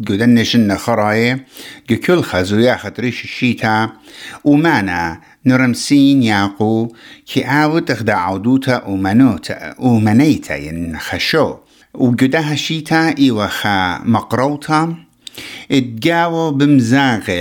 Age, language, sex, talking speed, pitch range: 60-79, English, male, 95 wpm, 100-140 Hz